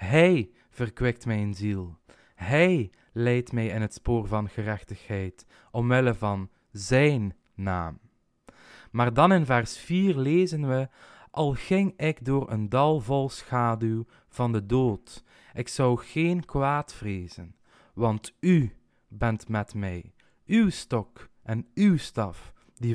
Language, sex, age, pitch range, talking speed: Dutch, male, 20-39, 110-155 Hz, 130 wpm